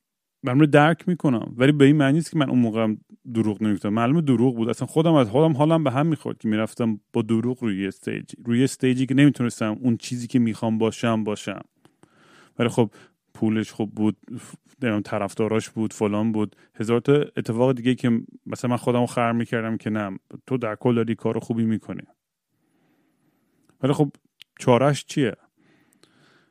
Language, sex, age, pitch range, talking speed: Persian, male, 30-49, 110-145 Hz, 165 wpm